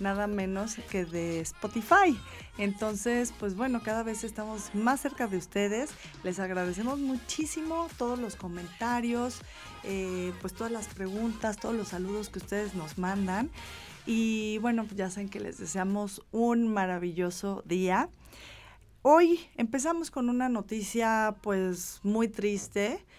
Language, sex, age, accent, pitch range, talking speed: Spanish, female, 30-49, Mexican, 170-210 Hz, 130 wpm